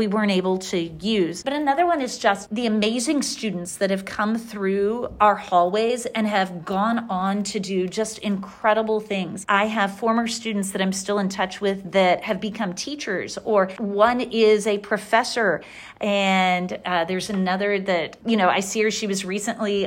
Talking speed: 180 wpm